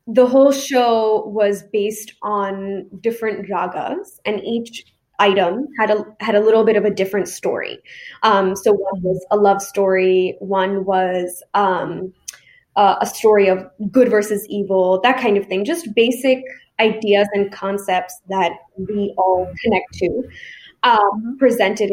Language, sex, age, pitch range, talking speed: English, female, 10-29, 200-250 Hz, 150 wpm